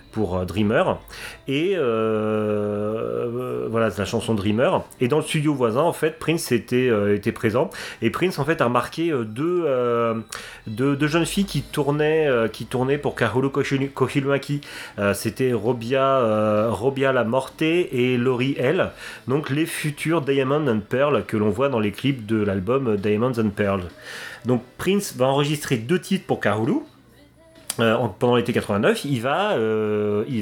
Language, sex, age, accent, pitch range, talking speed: French, male, 30-49, French, 110-135 Hz, 170 wpm